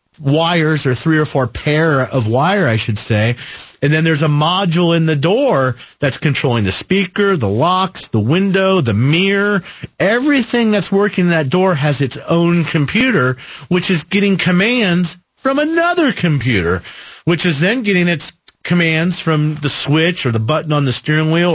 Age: 40-59